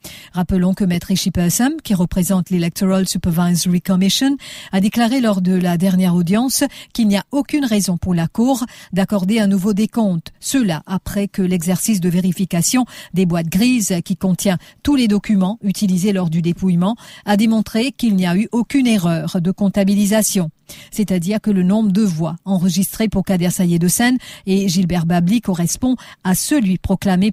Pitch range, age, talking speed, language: 180-210 Hz, 50-69, 160 wpm, English